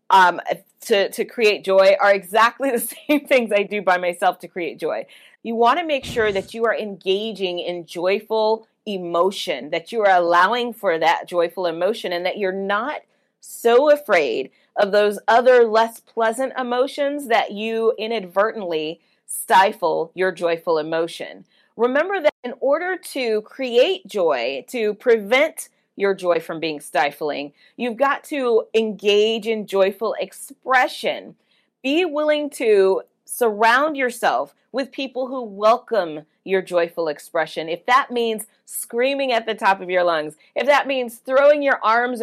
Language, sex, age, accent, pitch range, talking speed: English, female, 30-49, American, 190-260 Hz, 150 wpm